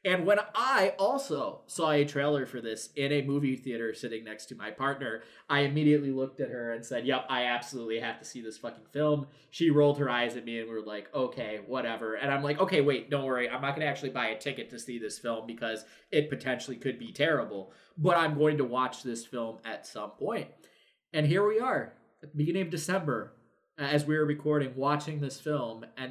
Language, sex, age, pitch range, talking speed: English, male, 20-39, 125-160 Hz, 225 wpm